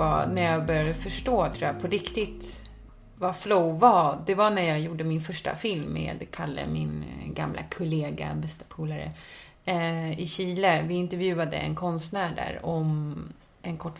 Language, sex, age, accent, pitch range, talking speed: English, female, 30-49, Swedish, 155-180 Hz, 155 wpm